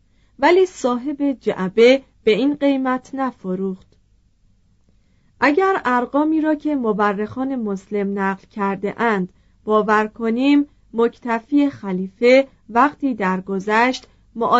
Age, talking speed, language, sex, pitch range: 40-59, 95 wpm, Persian, female, 195-265 Hz